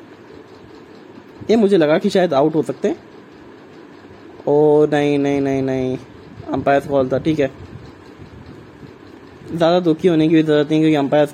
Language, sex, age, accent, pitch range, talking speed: English, male, 20-39, Indian, 150-185 Hz, 150 wpm